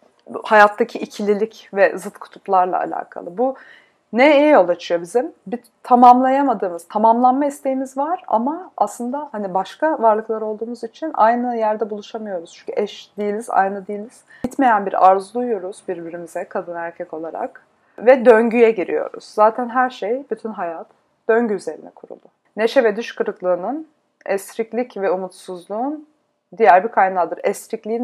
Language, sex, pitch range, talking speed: Turkish, female, 190-245 Hz, 130 wpm